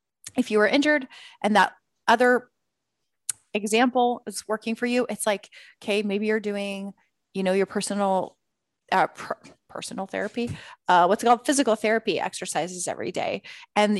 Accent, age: American, 30-49